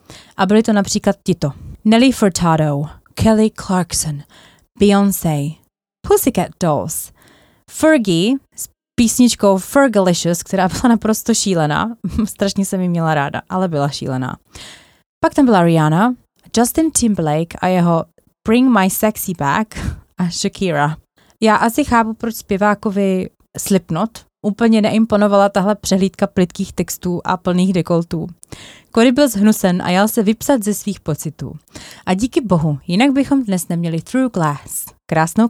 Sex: female